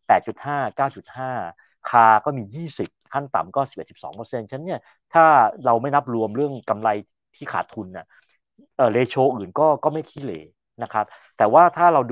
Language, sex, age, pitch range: Thai, male, 30-49, 105-130 Hz